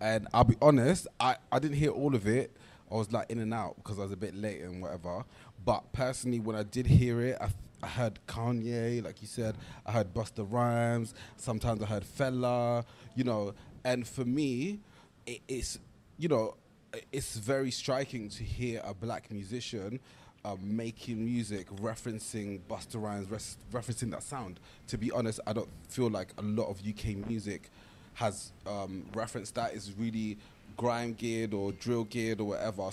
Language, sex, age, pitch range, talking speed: English, male, 20-39, 105-120 Hz, 175 wpm